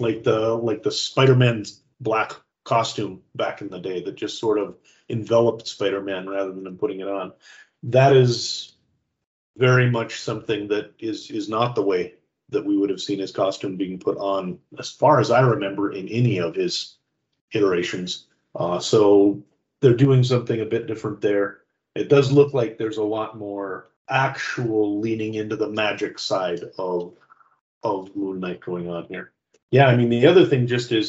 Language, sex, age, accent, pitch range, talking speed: English, male, 40-59, American, 105-135 Hz, 180 wpm